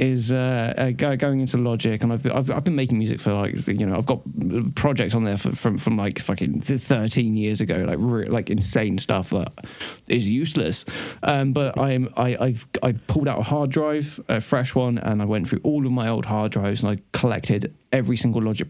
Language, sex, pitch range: English, male, 105-130 Hz